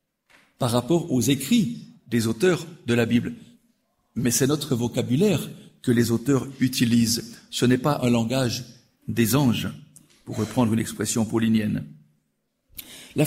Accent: French